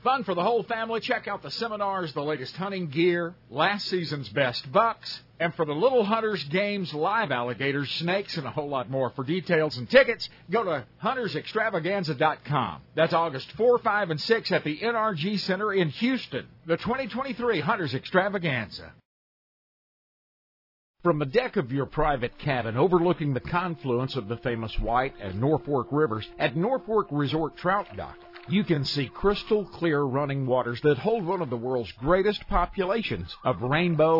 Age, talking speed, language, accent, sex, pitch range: 50-69, 165 wpm, English, American, male, 130-190 Hz